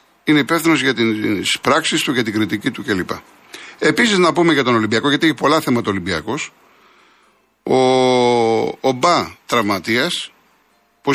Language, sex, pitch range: Greek, male, 110-155 Hz